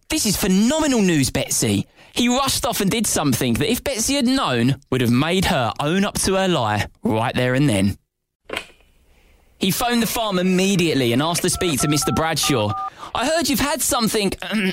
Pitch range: 145-245 Hz